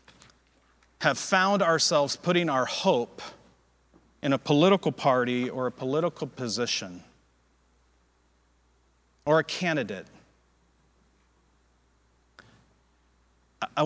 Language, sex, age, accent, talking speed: English, male, 40-59, American, 80 wpm